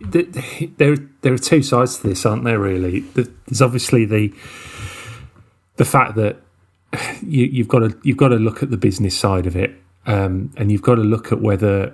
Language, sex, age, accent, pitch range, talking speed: English, male, 30-49, British, 100-125 Hz, 190 wpm